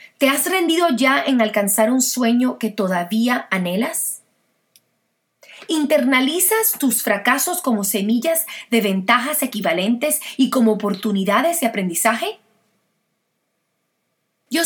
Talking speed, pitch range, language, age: 100 wpm, 220-280 Hz, English, 30-49